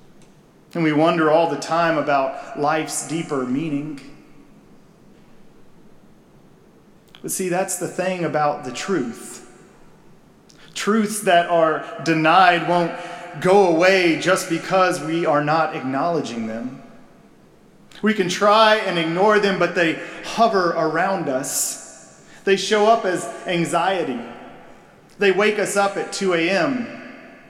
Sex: male